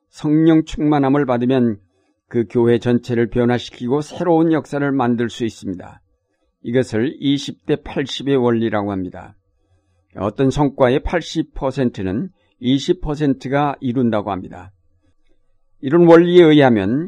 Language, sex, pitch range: Korean, male, 120-145 Hz